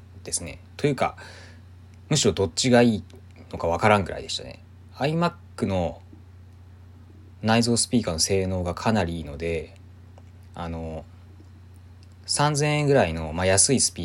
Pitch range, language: 90-100 Hz, Japanese